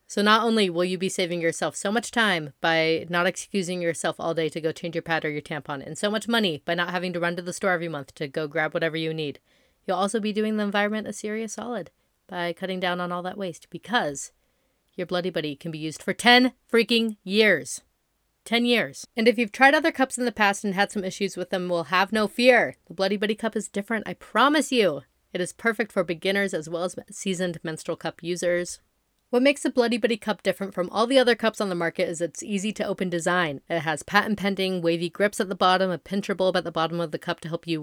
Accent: American